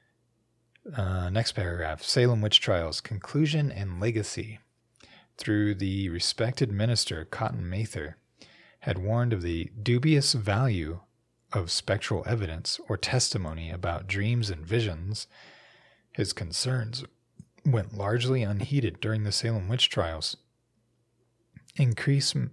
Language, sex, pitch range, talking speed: English, male, 100-120 Hz, 110 wpm